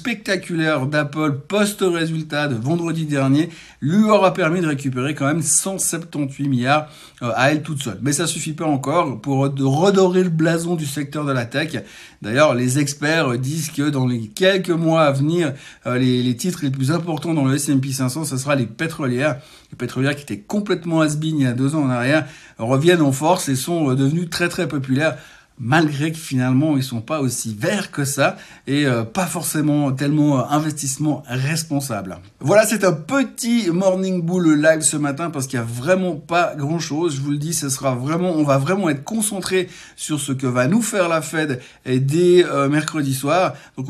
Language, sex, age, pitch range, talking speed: French, male, 60-79, 135-165 Hz, 195 wpm